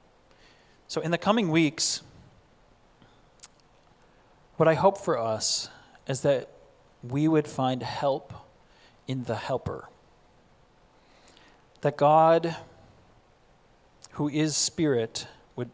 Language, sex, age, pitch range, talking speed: English, male, 40-59, 120-150 Hz, 95 wpm